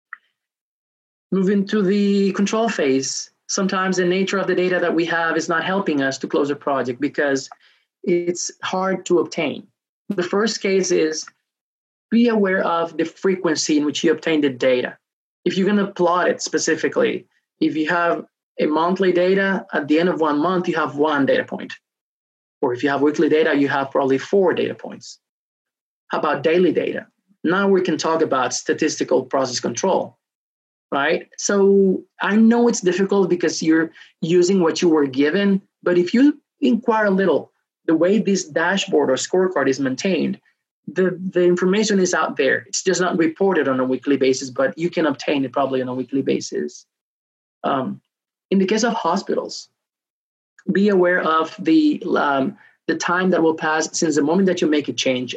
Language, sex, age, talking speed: English, male, 20-39, 175 wpm